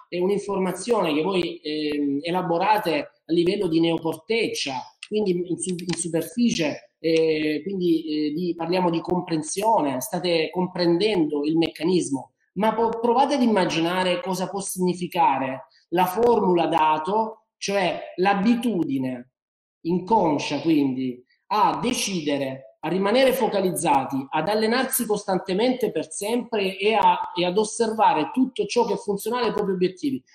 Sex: male